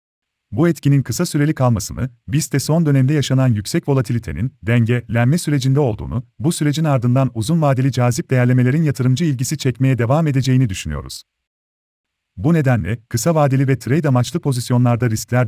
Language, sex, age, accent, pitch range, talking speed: Turkish, male, 40-59, native, 115-145 Hz, 145 wpm